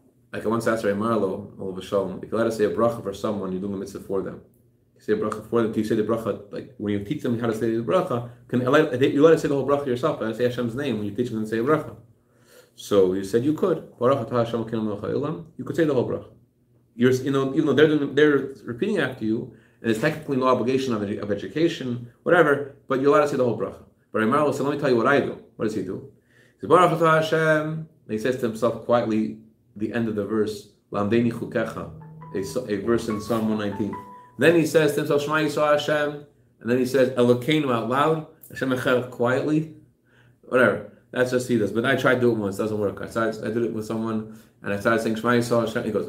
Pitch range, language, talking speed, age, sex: 110-140 Hz, English, 240 wpm, 30-49, male